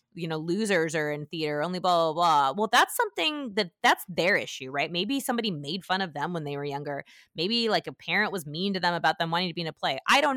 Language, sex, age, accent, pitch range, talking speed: English, female, 20-39, American, 160-225 Hz, 265 wpm